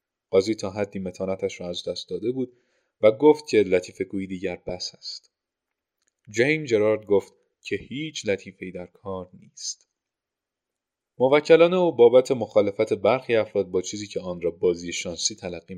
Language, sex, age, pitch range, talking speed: Persian, male, 30-49, 95-150 Hz, 150 wpm